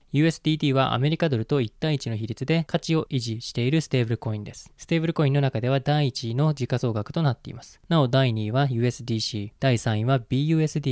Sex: male